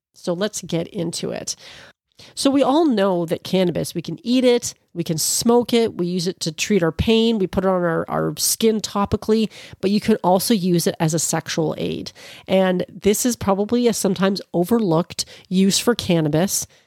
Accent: American